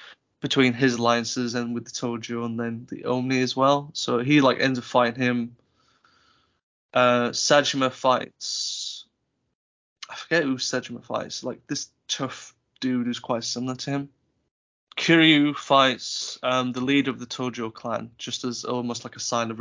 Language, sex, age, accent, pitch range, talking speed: English, male, 20-39, British, 120-140 Hz, 160 wpm